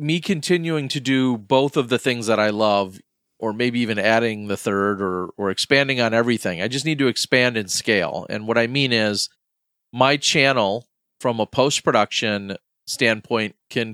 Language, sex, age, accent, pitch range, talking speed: Swedish, male, 40-59, American, 105-125 Hz, 180 wpm